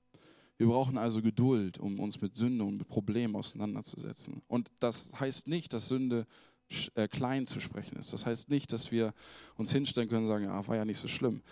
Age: 20-39